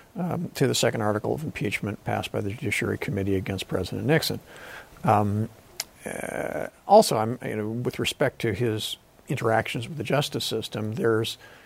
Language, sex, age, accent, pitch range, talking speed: English, male, 50-69, American, 110-130 Hz, 160 wpm